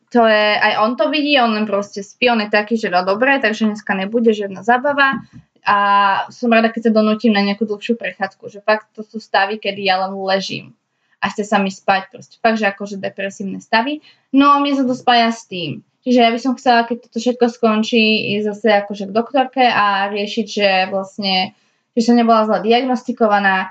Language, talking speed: Slovak, 215 wpm